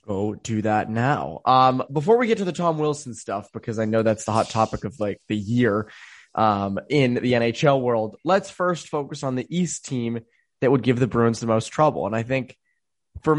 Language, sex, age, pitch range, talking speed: English, male, 20-39, 110-150 Hz, 215 wpm